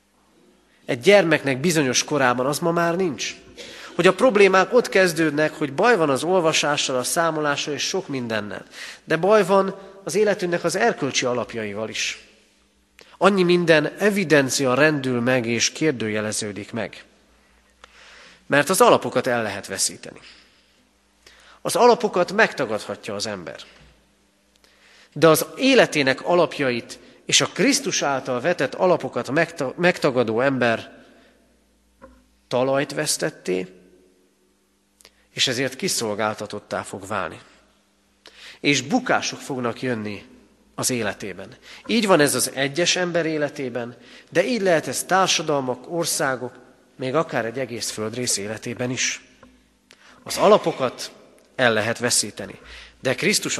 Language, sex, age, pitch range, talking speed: Hungarian, male, 30-49, 120-175 Hz, 115 wpm